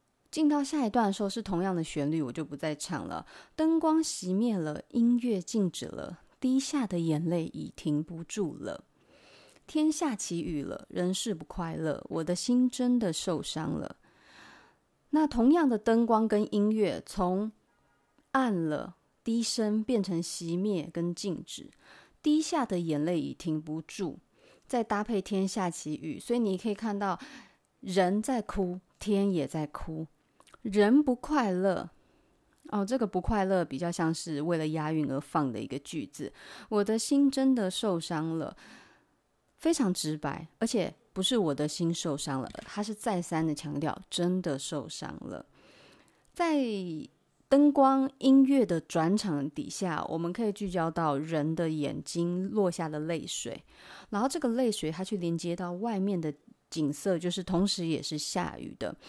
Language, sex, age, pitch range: Chinese, female, 30-49, 160-230 Hz